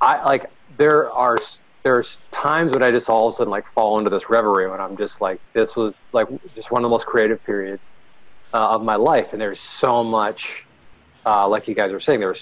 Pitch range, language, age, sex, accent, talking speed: 110-145 Hz, English, 40-59, male, American, 225 wpm